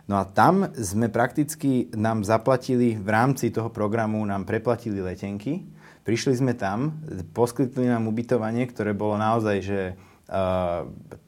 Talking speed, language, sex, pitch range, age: 135 wpm, Slovak, male, 95-115 Hz, 20-39